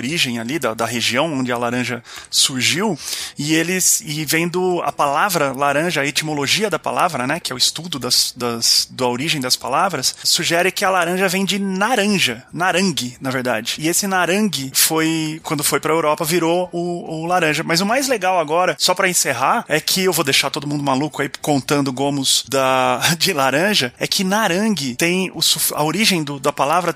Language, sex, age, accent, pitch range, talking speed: Portuguese, male, 20-39, Brazilian, 140-185 Hz, 190 wpm